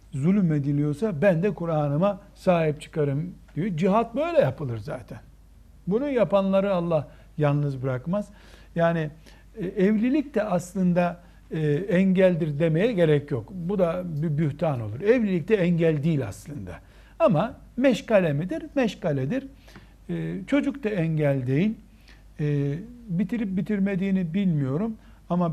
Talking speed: 110 wpm